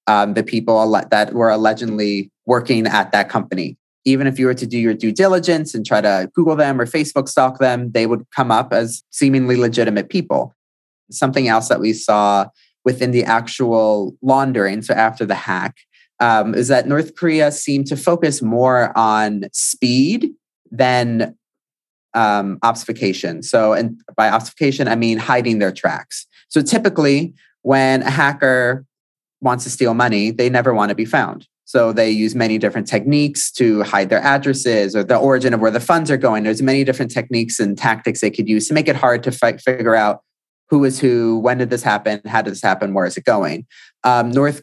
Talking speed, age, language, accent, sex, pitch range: 190 wpm, 30-49, English, American, male, 110-135 Hz